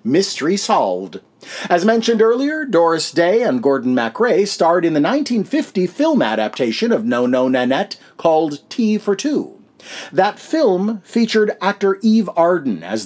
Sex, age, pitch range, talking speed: male, 50-69, 135-225 Hz, 145 wpm